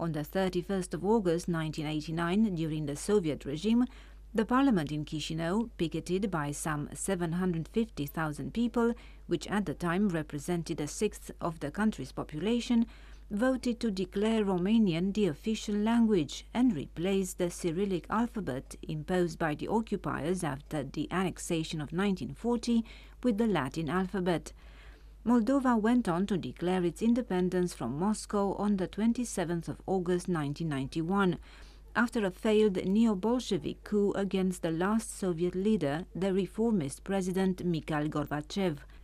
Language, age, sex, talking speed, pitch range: English, 40-59, female, 130 wpm, 165-215 Hz